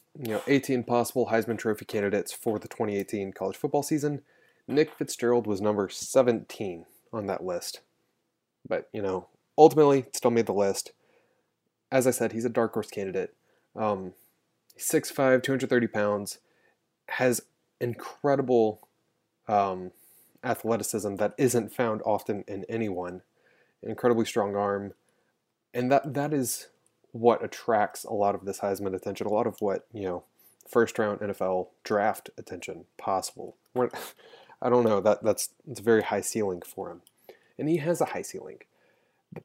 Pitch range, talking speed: 100-130 Hz, 150 wpm